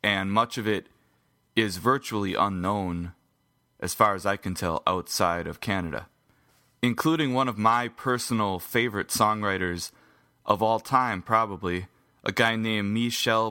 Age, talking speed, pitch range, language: 30-49, 140 wpm, 95-120 Hz, English